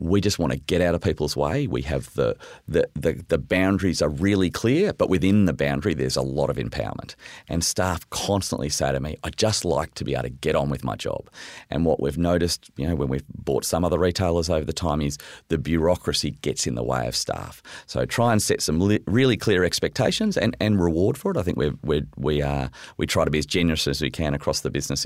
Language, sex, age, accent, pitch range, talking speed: English, male, 40-59, Australian, 75-100 Hz, 245 wpm